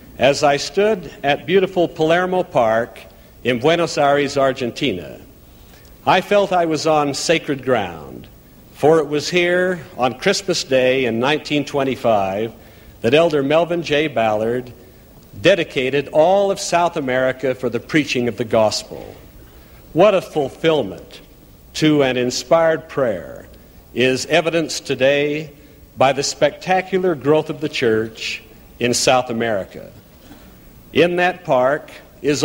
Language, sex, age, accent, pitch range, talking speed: English, male, 60-79, American, 125-160 Hz, 125 wpm